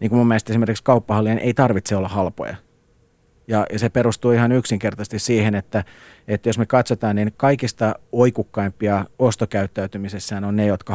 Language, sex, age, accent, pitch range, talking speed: Finnish, male, 40-59, native, 105-115 Hz, 160 wpm